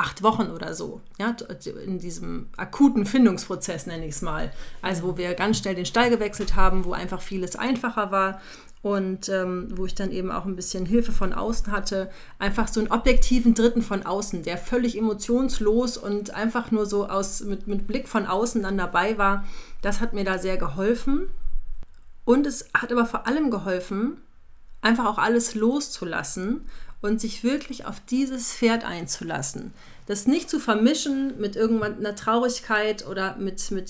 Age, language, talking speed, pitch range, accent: 30-49, German, 175 wpm, 190-230 Hz, German